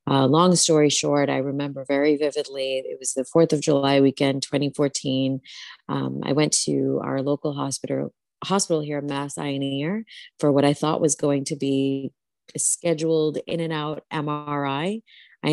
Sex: female